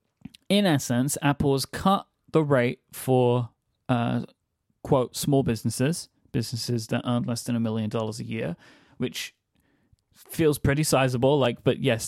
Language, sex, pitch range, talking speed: English, male, 115-140 Hz, 145 wpm